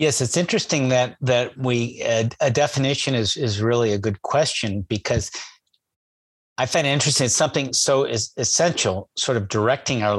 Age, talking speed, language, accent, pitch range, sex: 50-69, 170 wpm, English, American, 105-130 Hz, male